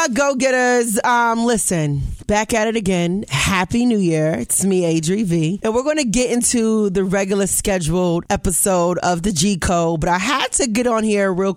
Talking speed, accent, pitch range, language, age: 190 wpm, American, 170-225 Hz, English, 30-49